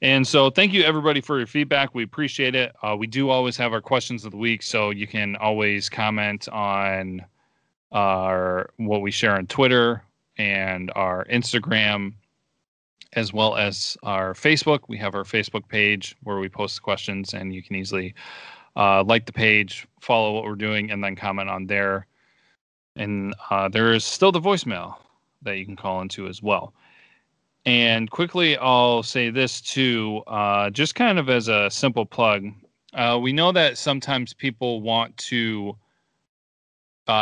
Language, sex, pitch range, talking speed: English, male, 100-125 Hz, 170 wpm